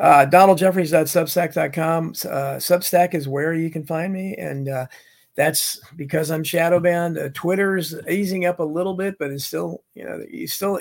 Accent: American